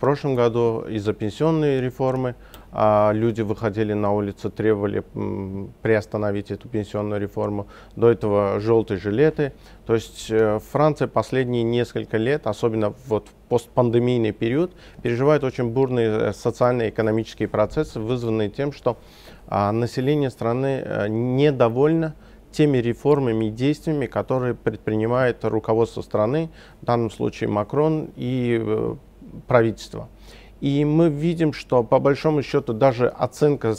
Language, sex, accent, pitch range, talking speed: Russian, male, native, 110-135 Hz, 110 wpm